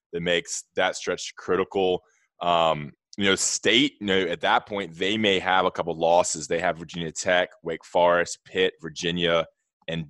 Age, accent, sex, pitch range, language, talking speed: 20-39, American, male, 85-100 Hz, English, 180 wpm